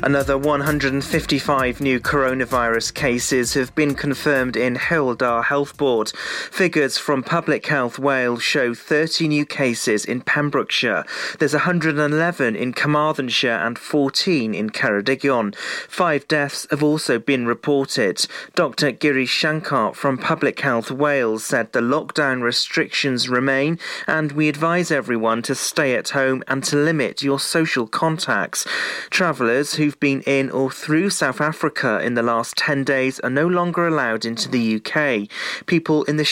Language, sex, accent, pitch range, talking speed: English, male, British, 125-155 Hz, 140 wpm